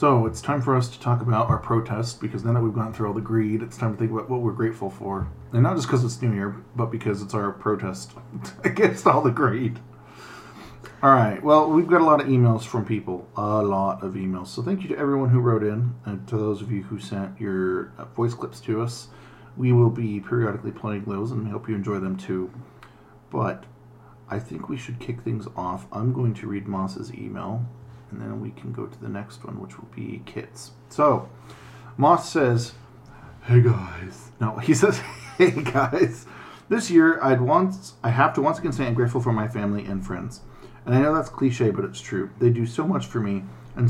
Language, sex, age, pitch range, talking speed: English, male, 40-59, 100-130 Hz, 220 wpm